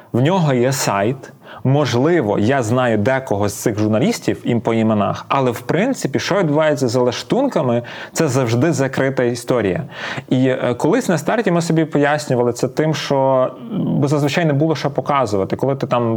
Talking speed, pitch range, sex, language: 160 wpm, 115-145 Hz, male, Ukrainian